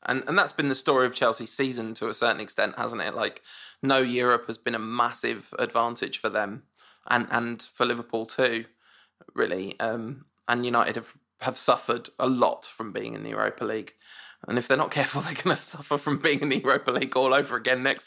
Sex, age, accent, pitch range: male, 20-39, British, 120-145 Hz